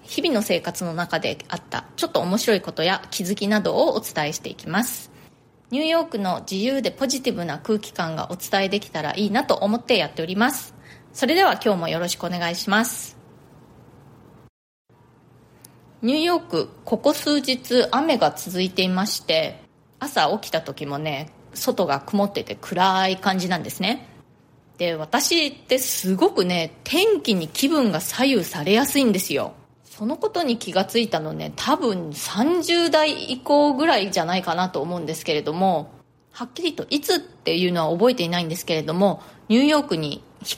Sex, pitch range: female, 170-255 Hz